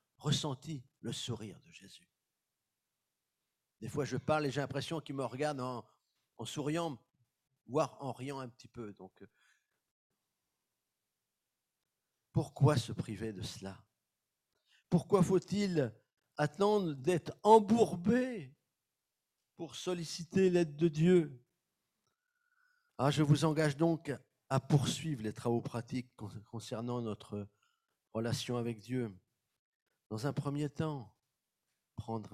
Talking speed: 110 wpm